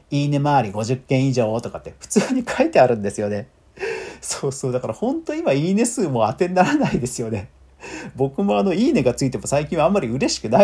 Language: Japanese